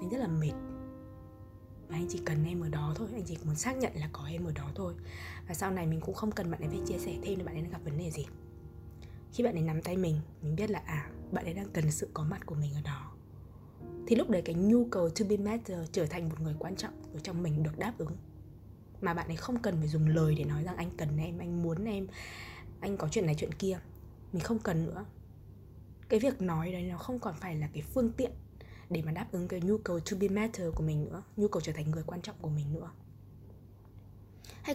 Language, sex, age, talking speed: Vietnamese, female, 20-39, 255 wpm